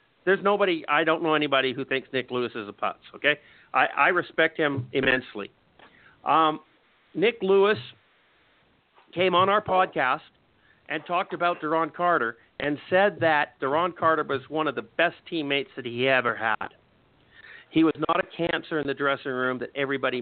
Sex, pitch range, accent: male, 135-175 Hz, American